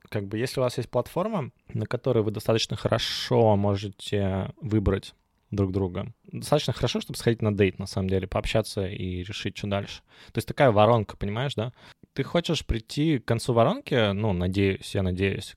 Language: Russian